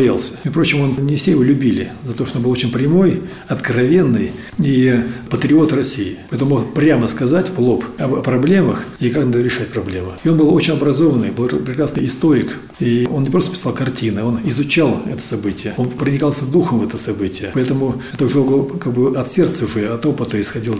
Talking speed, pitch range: 195 wpm, 115-150 Hz